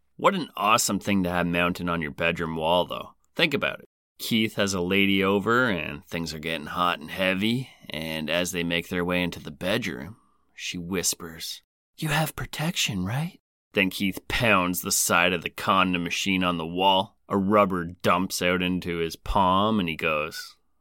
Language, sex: English, male